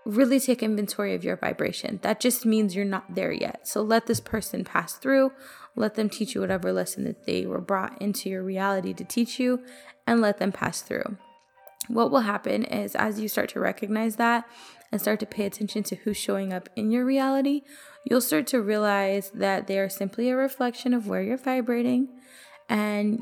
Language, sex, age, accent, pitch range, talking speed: English, female, 20-39, American, 200-250 Hz, 200 wpm